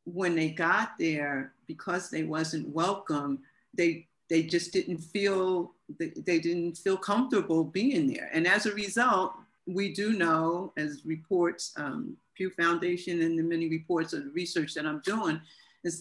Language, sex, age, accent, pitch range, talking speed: English, female, 50-69, American, 160-195 Hz, 155 wpm